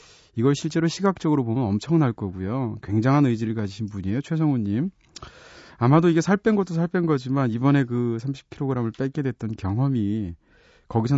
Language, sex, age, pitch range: Korean, male, 30-49, 110-155 Hz